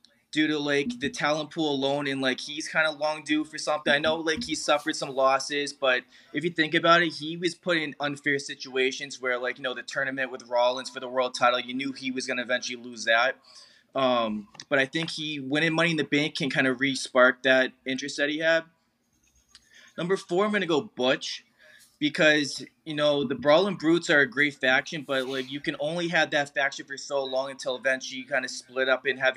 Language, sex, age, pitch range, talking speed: English, male, 20-39, 130-155 Hz, 230 wpm